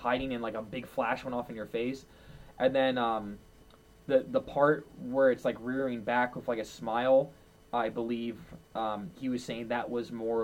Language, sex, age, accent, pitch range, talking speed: English, male, 20-39, American, 110-140 Hz, 200 wpm